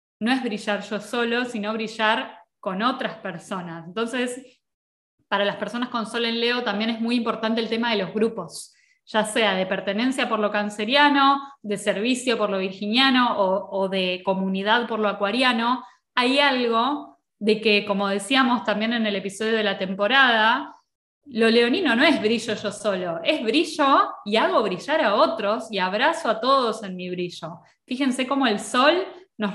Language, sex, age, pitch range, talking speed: Spanish, female, 20-39, 200-255 Hz, 175 wpm